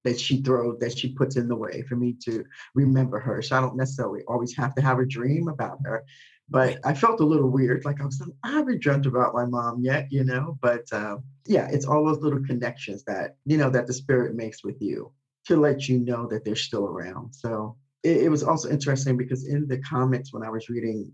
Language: English